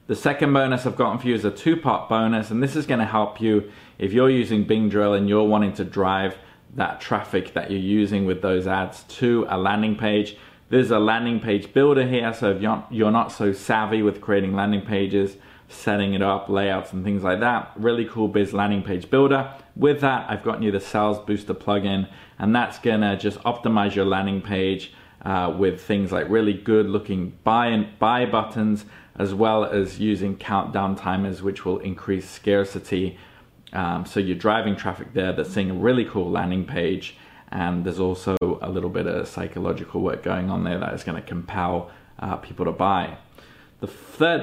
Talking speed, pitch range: 190 wpm, 95-110 Hz